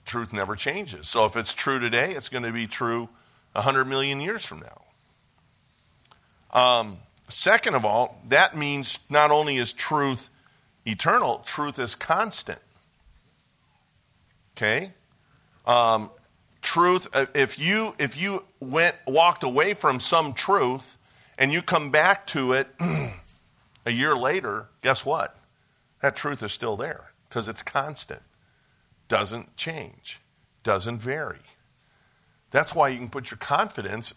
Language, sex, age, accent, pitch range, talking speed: English, male, 50-69, American, 115-145 Hz, 130 wpm